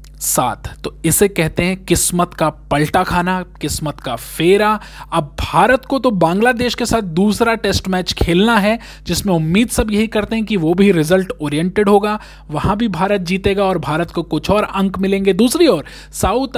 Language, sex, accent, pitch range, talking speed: Hindi, male, native, 155-210 Hz, 180 wpm